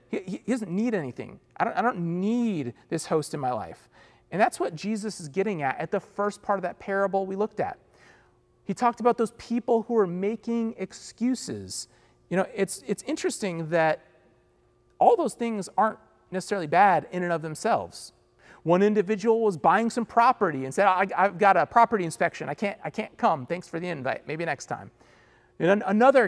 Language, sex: English, male